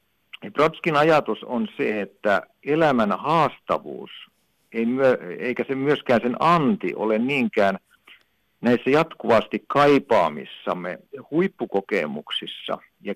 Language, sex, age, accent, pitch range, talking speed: Finnish, male, 60-79, native, 105-135 Hz, 90 wpm